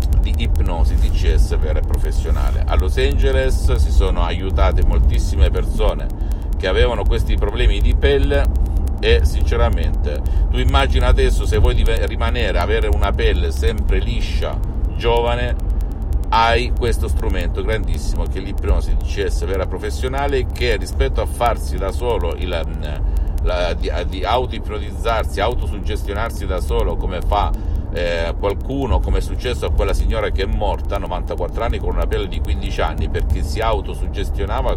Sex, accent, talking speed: male, native, 140 wpm